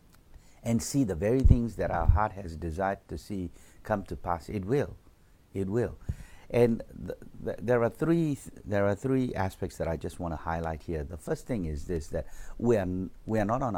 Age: 60-79